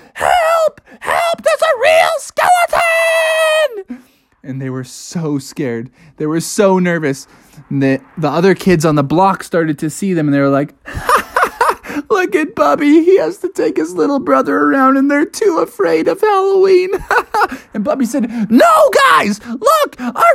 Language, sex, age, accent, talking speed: English, male, 20-39, American, 170 wpm